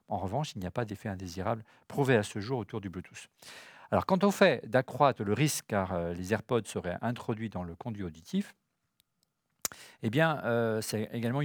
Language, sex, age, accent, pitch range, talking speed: French, male, 40-59, French, 110-150 Hz, 195 wpm